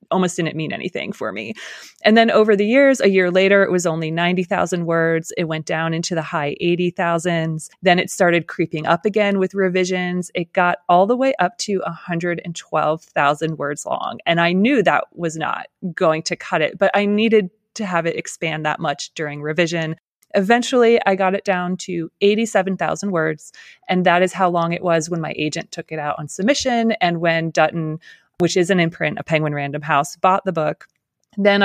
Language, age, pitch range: English, 30-49, 160-195 Hz